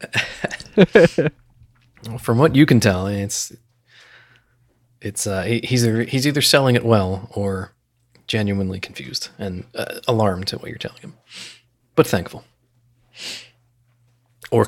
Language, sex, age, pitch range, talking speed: English, male, 30-49, 95-115 Hz, 125 wpm